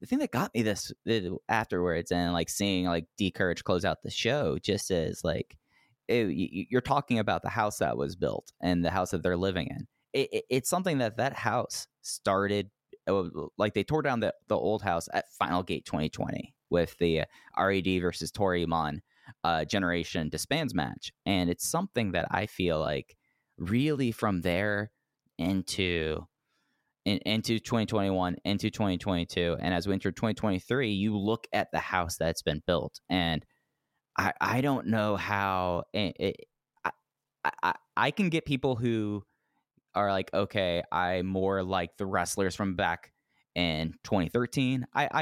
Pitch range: 85-110 Hz